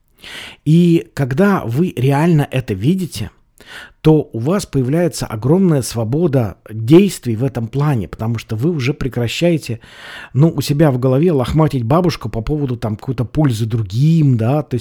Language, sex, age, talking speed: Russian, male, 50-69, 140 wpm